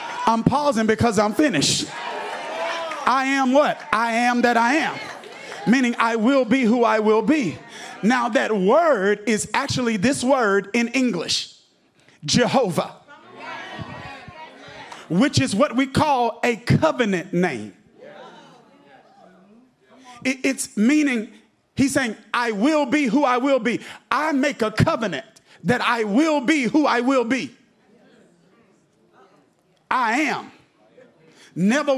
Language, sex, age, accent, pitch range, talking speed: English, male, 40-59, American, 230-295 Hz, 120 wpm